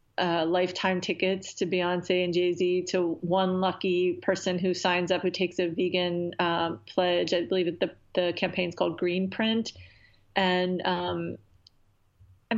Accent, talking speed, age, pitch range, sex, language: American, 155 wpm, 30-49, 175-190 Hz, female, English